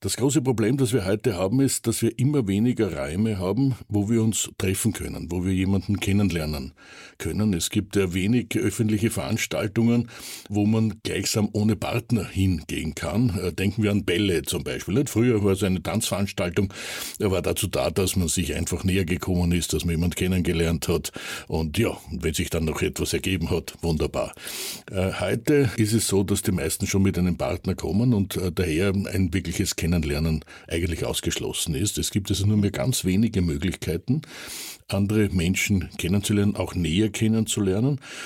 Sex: male